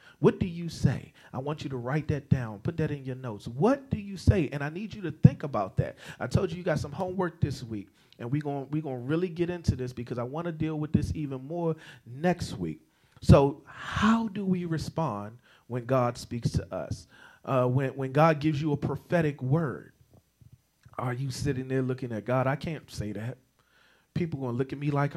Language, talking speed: English, 225 wpm